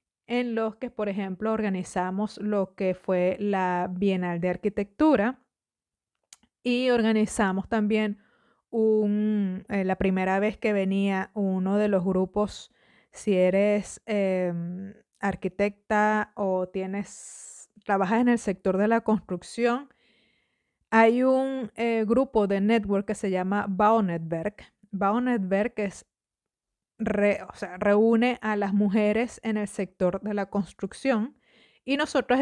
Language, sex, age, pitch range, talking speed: Spanish, female, 30-49, 195-235 Hz, 130 wpm